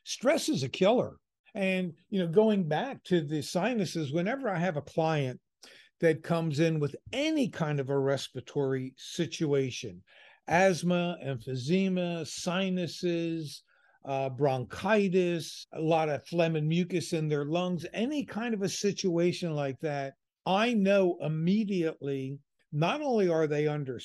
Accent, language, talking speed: American, English, 140 wpm